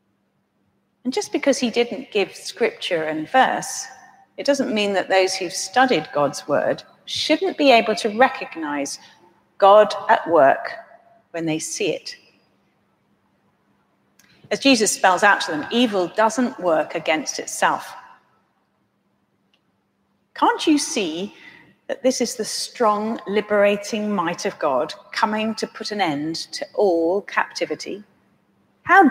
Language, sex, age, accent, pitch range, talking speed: English, female, 40-59, British, 190-270 Hz, 130 wpm